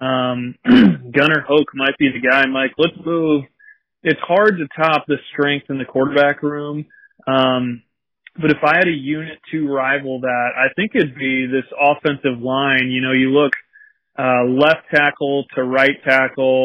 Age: 30-49